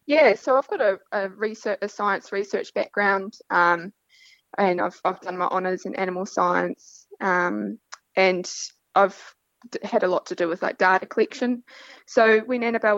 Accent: Australian